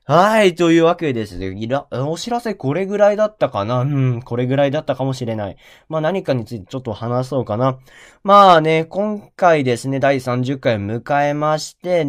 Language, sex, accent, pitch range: Japanese, male, native, 115-150 Hz